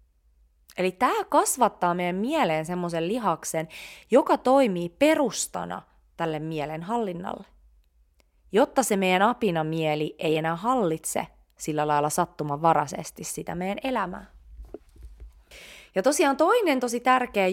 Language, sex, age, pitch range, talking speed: Finnish, female, 20-39, 150-220 Hz, 110 wpm